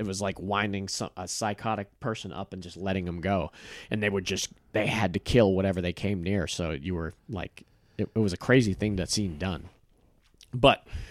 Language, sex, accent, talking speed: English, male, American, 210 wpm